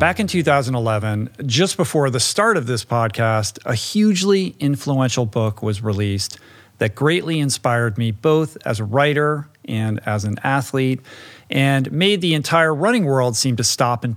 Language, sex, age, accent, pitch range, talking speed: English, male, 40-59, American, 110-140 Hz, 160 wpm